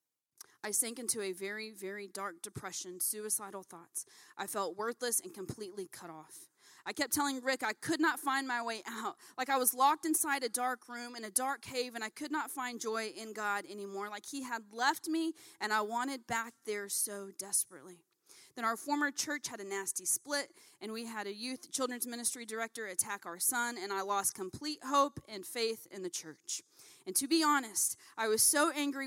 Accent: American